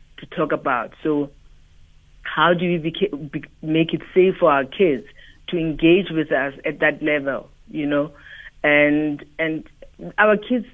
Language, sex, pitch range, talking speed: English, female, 150-185 Hz, 145 wpm